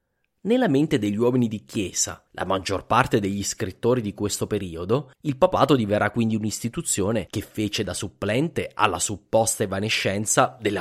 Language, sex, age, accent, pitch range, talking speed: English, male, 30-49, Italian, 100-130 Hz, 150 wpm